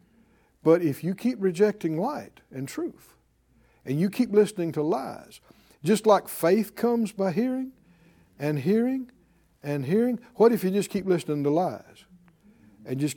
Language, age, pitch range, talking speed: English, 60-79, 160-235 Hz, 155 wpm